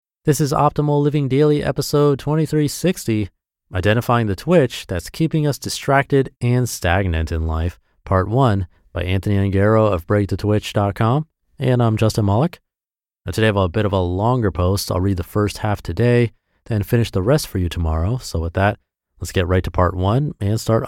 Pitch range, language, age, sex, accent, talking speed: 90-120 Hz, English, 30-49, male, American, 180 wpm